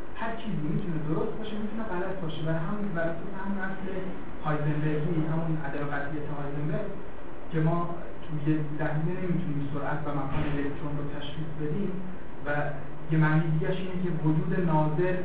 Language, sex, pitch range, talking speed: Persian, male, 140-180 Hz, 155 wpm